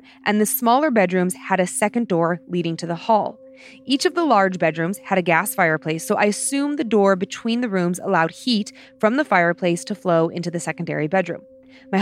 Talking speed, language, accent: 205 wpm, English, American